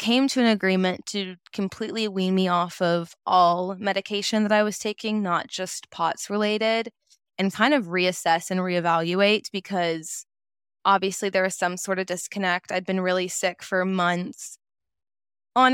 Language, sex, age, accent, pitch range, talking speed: English, female, 20-39, American, 175-200 Hz, 155 wpm